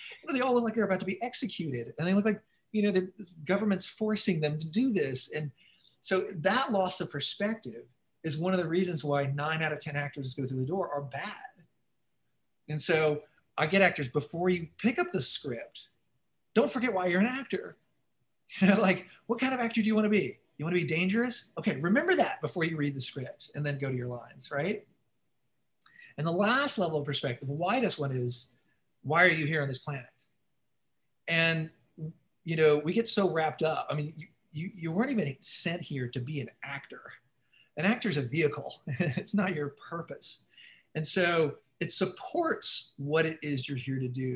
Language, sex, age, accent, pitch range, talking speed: English, male, 40-59, American, 140-190 Hz, 205 wpm